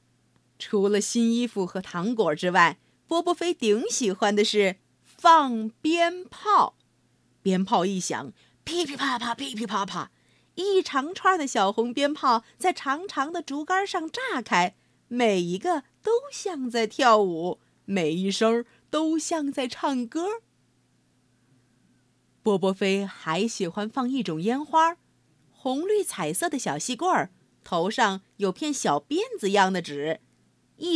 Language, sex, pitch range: Chinese, female, 190-305 Hz